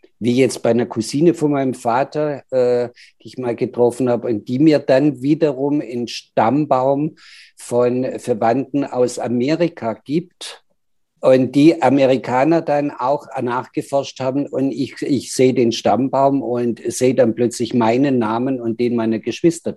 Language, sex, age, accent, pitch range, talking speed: German, male, 50-69, German, 120-140 Hz, 150 wpm